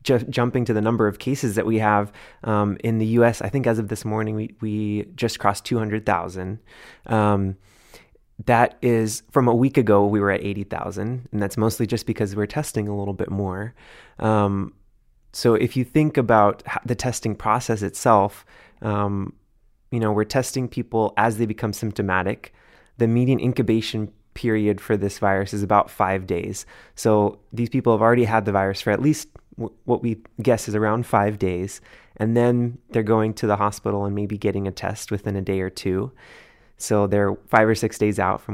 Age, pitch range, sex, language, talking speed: 20-39, 100-115 Hz, male, English, 190 wpm